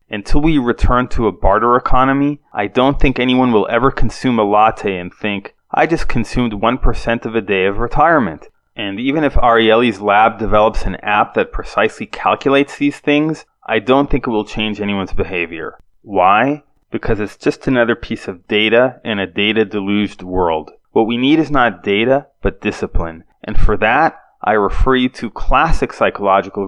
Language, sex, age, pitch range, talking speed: English, male, 30-49, 105-125 Hz, 175 wpm